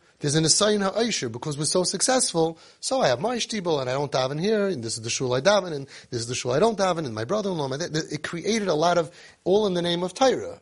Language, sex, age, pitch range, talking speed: English, male, 30-49, 140-195 Hz, 270 wpm